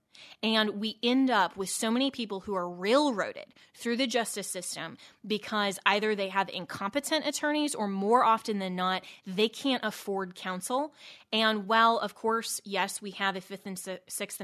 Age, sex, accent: 20-39, female, American